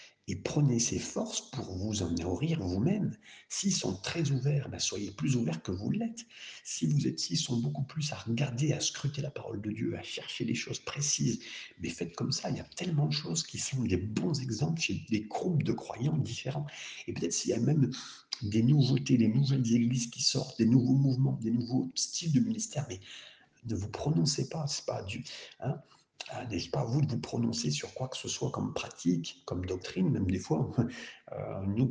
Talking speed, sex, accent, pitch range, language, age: 215 wpm, male, French, 95-140 Hz, French, 60-79